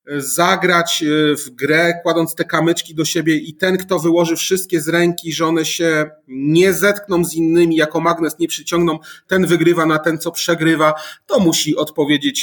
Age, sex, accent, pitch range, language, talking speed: 30-49, male, native, 130-160 Hz, Polish, 170 wpm